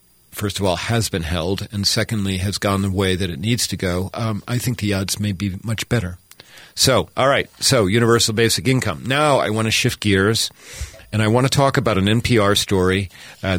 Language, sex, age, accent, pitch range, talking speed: English, male, 50-69, American, 95-115 Hz, 215 wpm